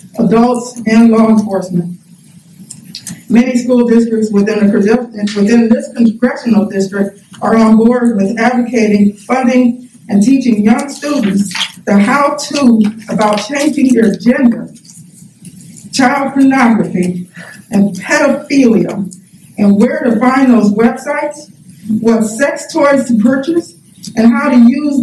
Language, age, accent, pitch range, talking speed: English, 50-69, American, 205-250 Hz, 115 wpm